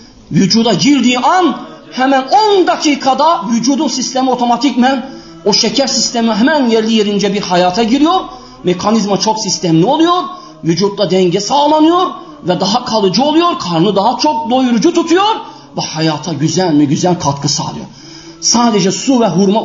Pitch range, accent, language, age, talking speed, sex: 160-245 Hz, native, Turkish, 40-59, 135 wpm, male